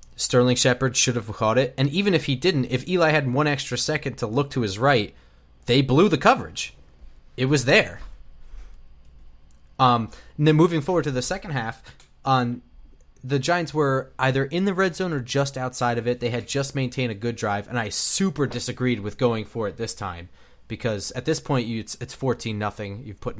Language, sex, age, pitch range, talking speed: English, male, 20-39, 105-135 Hz, 205 wpm